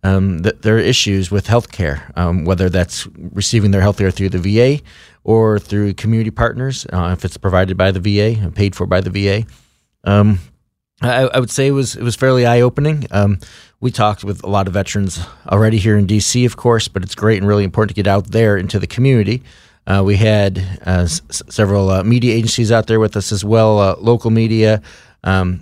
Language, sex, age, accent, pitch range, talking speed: English, male, 30-49, American, 95-115 Hz, 215 wpm